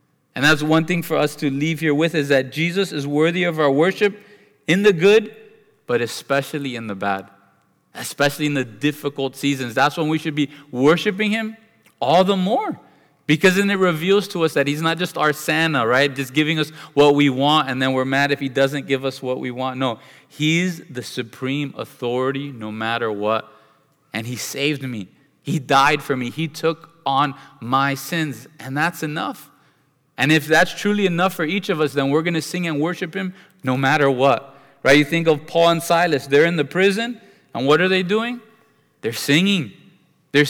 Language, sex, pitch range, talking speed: English, male, 140-185 Hz, 200 wpm